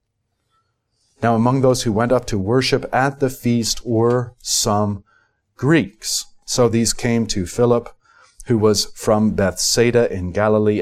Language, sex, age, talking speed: English, male, 40-59, 140 wpm